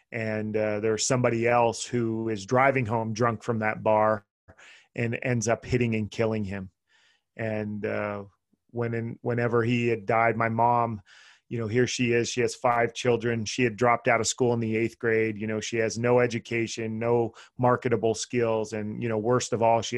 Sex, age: male, 30-49